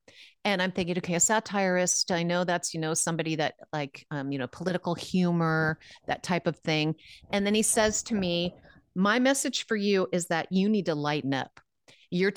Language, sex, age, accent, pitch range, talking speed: English, female, 40-59, American, 155-195 Hz, 200 wpm